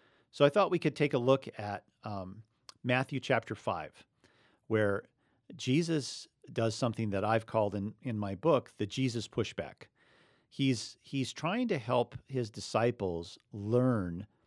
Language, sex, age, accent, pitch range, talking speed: English, male, 50-69, American, 105-140 Hz, 145 wpm